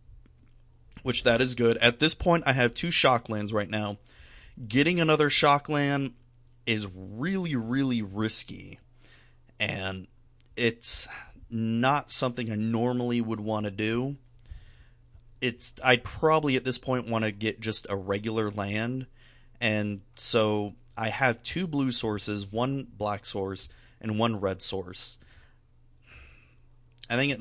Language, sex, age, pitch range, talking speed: English, male, 30-49, 105-125 Hz, 140 wpm